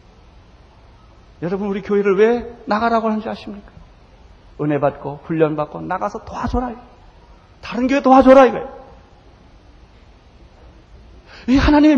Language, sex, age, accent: Korean, male, 40-59, native